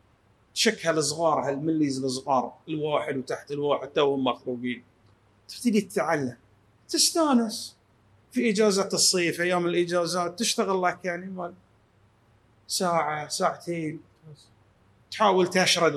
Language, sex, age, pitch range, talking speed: Arabic, male, 30-49, 120-175 Hz, 95 wpm